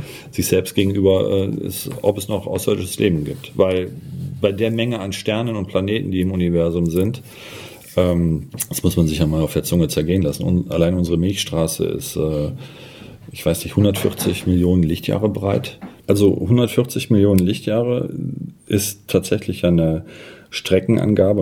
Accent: German